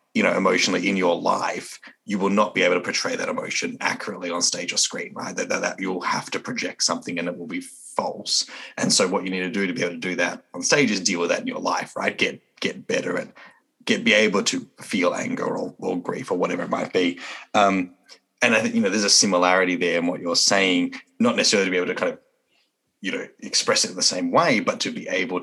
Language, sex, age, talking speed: English, male, 30-49, 255 wpm